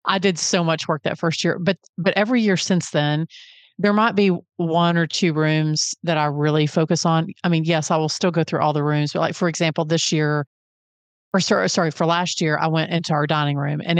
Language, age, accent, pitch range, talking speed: English, 40-59, American, 155-185 Hz, 240 wpm